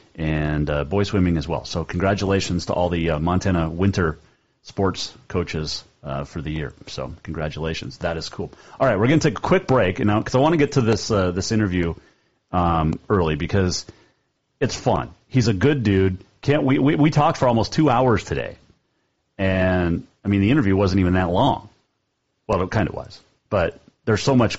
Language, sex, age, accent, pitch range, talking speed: English, male, 30-49, American, 90-115 Hz, 205 wpm